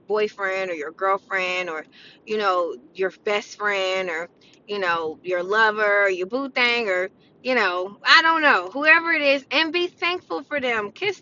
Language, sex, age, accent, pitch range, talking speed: English, female, 20-39, American, 200-265 Hz, 180 wpm